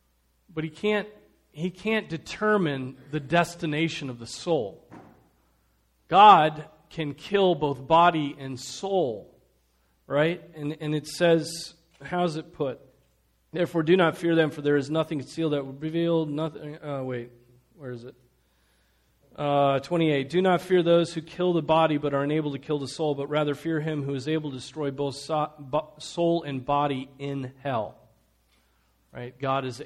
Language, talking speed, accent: English, 160 wpm, American